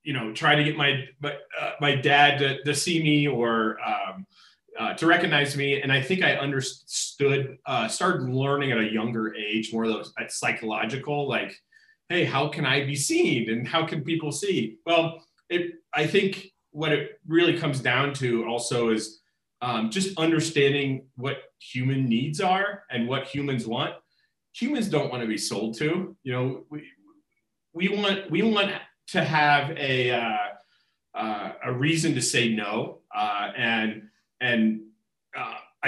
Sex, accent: male, American